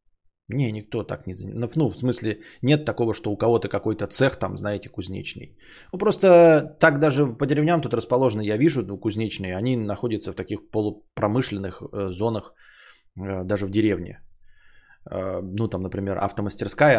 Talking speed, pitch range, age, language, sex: 160 wpm, 95-115 Hz, 20-39, Bulgarian, male